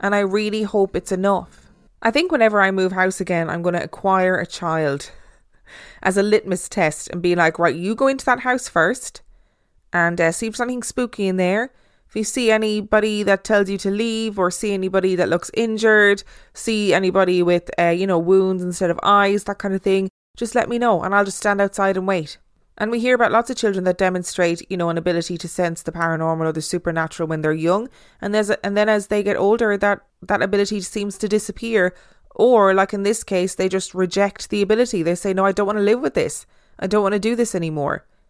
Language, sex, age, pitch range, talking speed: English, female, 20-39, 185-215 Hz, 230 wpm